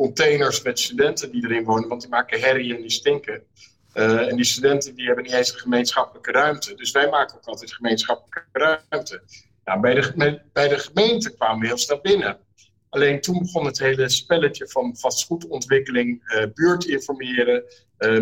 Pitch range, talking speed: 115-145 Hz, 180 wpm